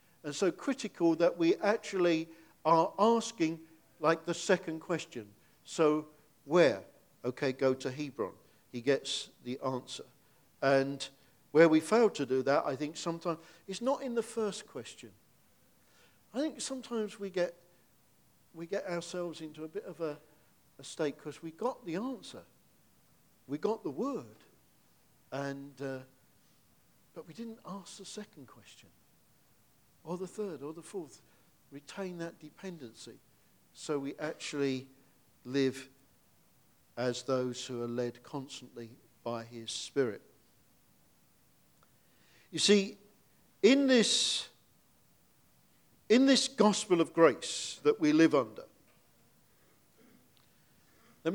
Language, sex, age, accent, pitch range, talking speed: English, male, 50-69, British, 135-195 Hz, 125 wpm